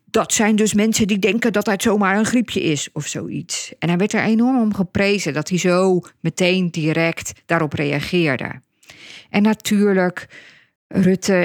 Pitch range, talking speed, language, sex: 170-200 Hz, 160 wpm, Dutch, female